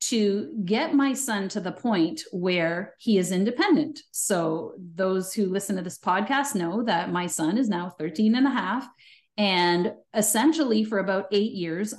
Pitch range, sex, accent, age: 185-255 Hz, female, American, 40-59